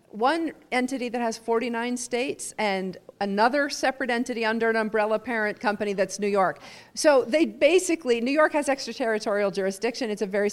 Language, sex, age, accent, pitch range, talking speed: English, female, 40-59, American, 200-245 Hz, 165 wpm